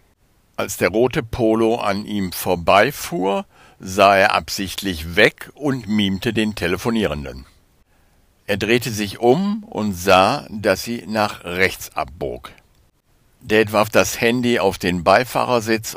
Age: 60-79